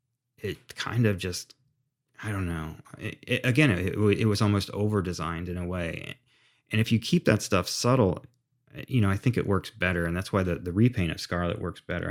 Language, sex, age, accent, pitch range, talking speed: English, male, 30-49, American, 90-120 Hz, 205 wpm